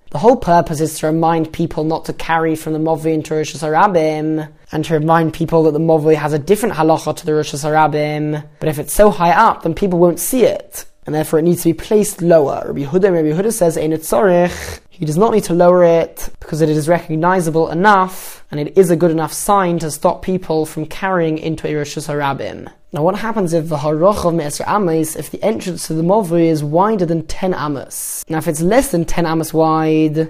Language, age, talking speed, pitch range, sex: English, 10-29, 220 wpm, 155-180 Hz, male